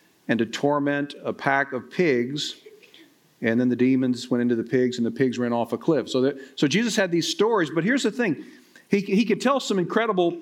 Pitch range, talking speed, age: 125-195 Hz, 225 wpm, 50-69